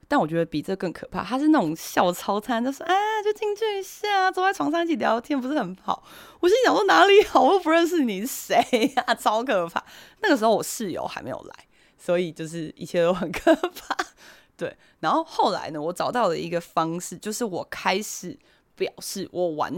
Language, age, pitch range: Chinese, 20-39, 175-290 Hz